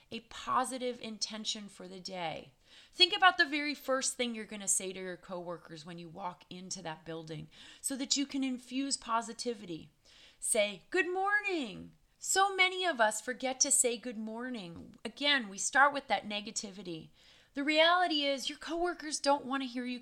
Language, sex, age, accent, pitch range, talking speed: English, female, 30-49, American, 190-270 Hz, 175 wpm